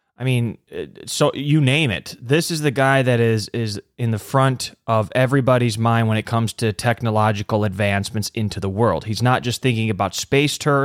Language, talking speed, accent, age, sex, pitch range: English, 190 wpm, American, 30-49, male, 110-135 Hz